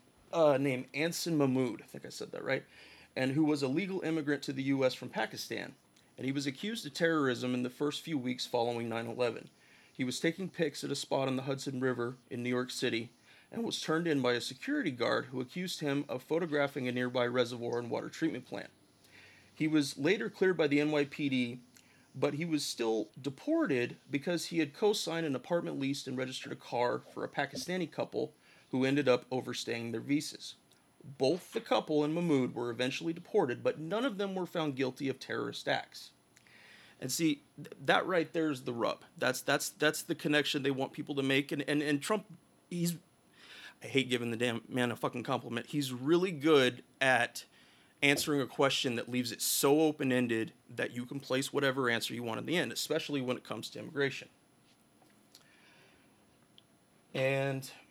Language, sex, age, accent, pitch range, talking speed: English, male, 30-49, American, 125-155 Hz, 190 wpm